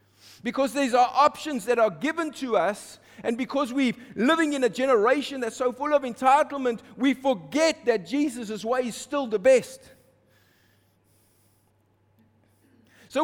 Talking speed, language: 140 wpm, English